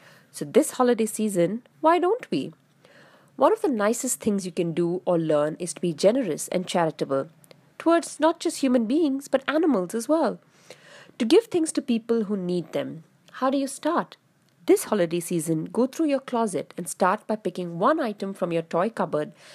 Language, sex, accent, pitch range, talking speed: English, female, Indian, 170-255 Hz, 185 wpm